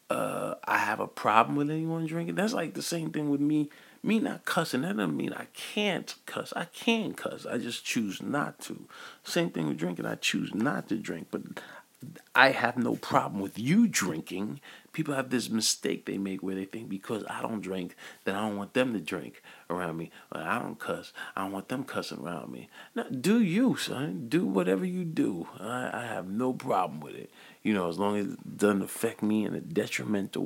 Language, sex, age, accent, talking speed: English, male, 40-59, American, 210 wpm